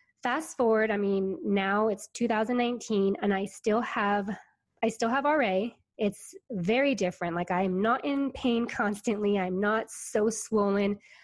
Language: English